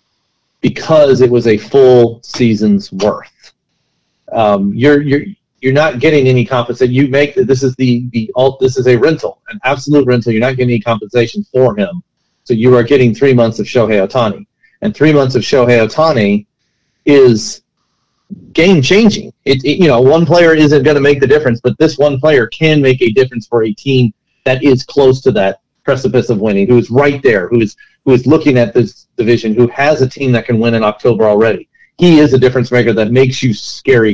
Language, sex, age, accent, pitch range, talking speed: English, male, 40-59, American, 120-155 Hz, 205 wpm